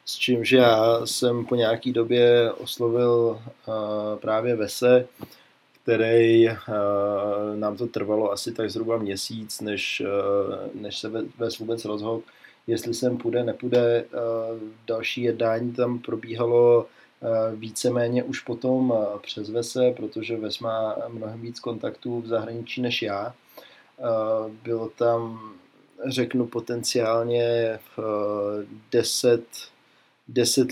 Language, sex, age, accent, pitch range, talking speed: Czech, male, 20-39, native, 110-120 Hz, 125 wpm